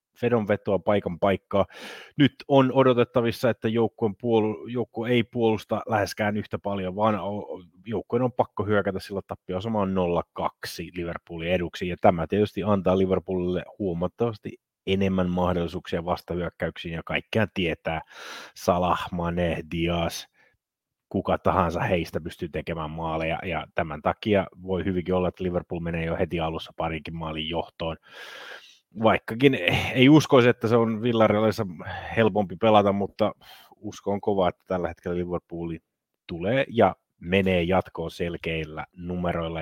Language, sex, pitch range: Finnish, male, 90-115 Hz